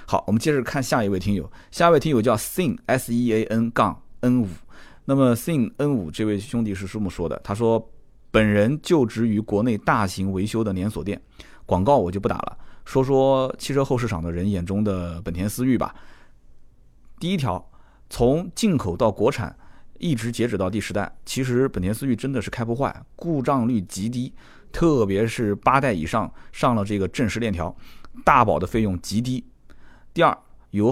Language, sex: Chinese, male